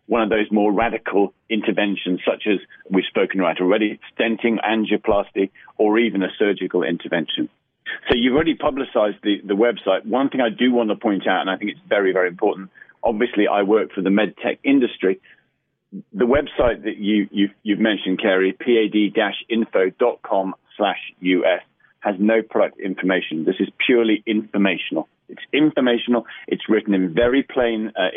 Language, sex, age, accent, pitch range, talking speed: English, male, 40-59, British, 100-125 Hz, 160 wpm